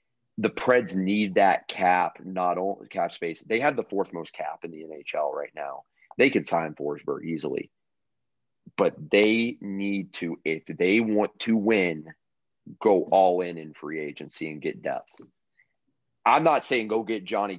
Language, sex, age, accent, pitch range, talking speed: English, male, 30-49, American, 95-125 Hz, 165 wpm